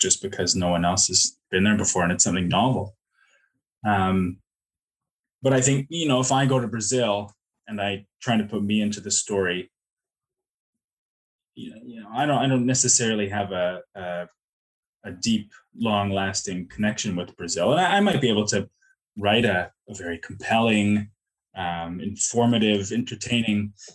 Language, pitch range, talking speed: English, 95-125 Hz, 170 wpm